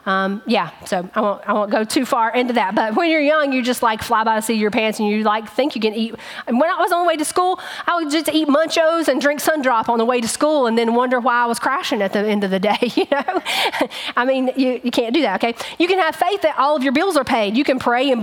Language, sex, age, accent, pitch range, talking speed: English, female, 30-49, American, 230-290 Hz, 305 wpm